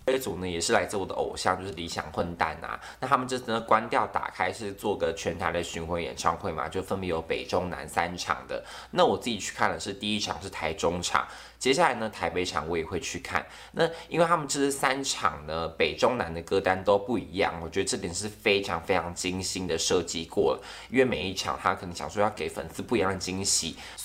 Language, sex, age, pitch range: Chinese, male, 20-39, 90-140 Hz